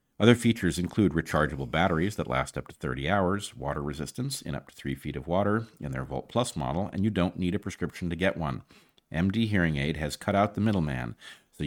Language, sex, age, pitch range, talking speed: English, male, 50-69, 75-105 Hz, 220 wpm